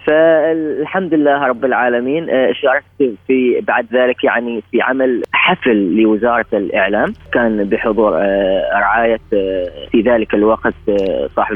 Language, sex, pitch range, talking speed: English, female, 110-135 Hz, 110 wpm